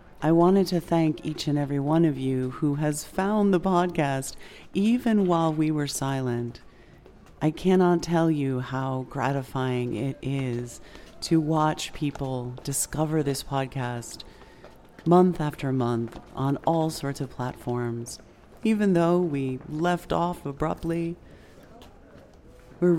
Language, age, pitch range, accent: English, 40-59, 130-160 Hz, American